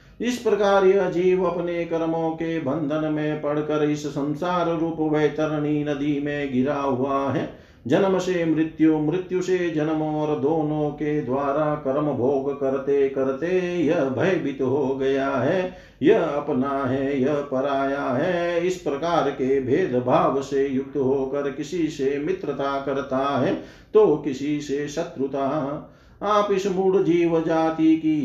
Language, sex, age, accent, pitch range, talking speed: Hindi, male, 50-69, native, 140-165 Hz, 140 wpm